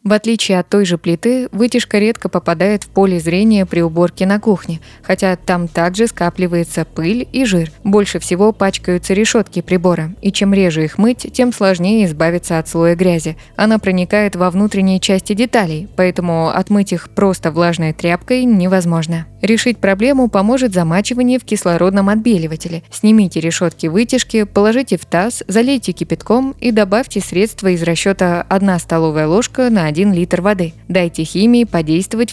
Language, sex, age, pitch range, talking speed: Russian, female, 20-39, 170-215 Hz, 150 wpm